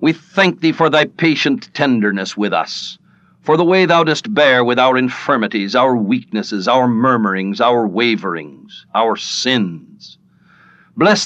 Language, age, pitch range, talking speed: English, 60-79, 125-175 Hz, 145 wpm